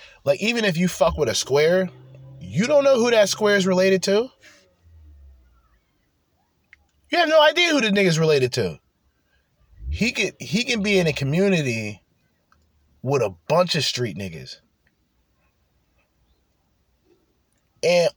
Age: 30-49